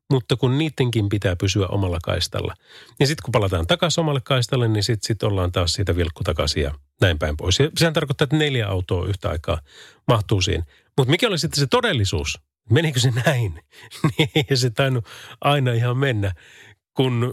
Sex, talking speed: male, 180 wpm